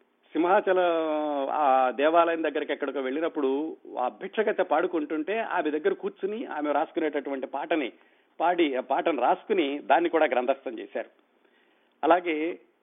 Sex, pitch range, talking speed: male, 135-175 Hz, 110 wpm